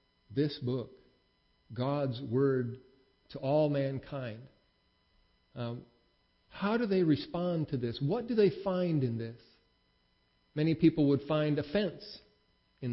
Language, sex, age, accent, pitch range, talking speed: English, male, 50-69, American, 125-155 Hz, 120 wpm